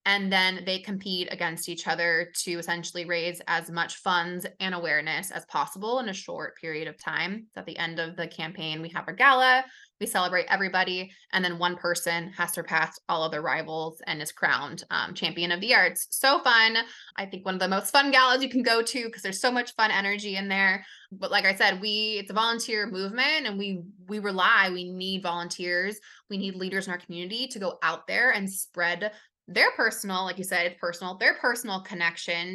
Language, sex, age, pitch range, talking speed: English, female, 20-39, 175-210 Hz, 210 wpm